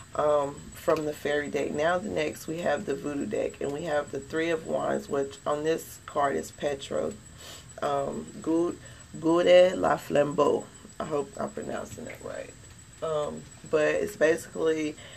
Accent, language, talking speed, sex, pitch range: American, English, 160 wpm, female, 135-155 Hz